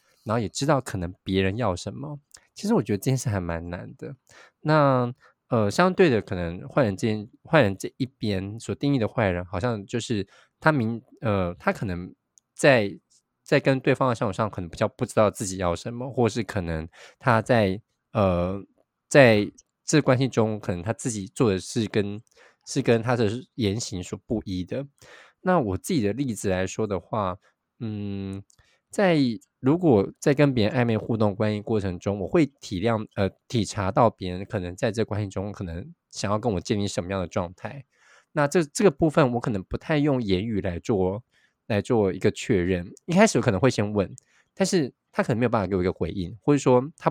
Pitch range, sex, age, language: 95-130 Hz, male, 20-39, Chinese